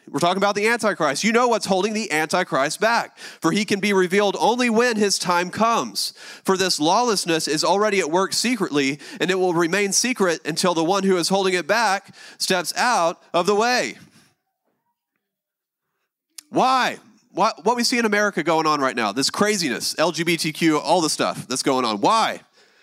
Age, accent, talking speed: 30-49, American, 180 wpm